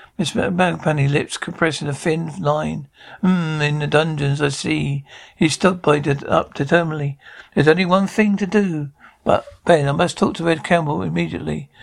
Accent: British